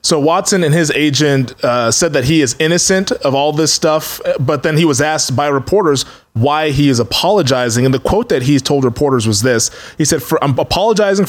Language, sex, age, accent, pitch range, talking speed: English, male, 20-39, American, 130-165 Hz, 215 wpm